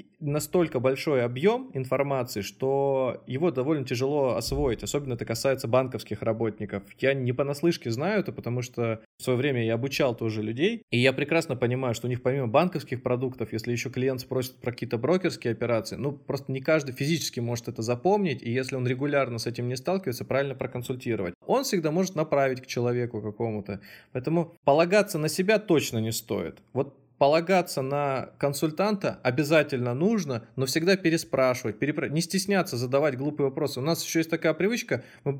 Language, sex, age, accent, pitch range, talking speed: Russian, male, 20-39, native, 120-155 Hz, 170 wpm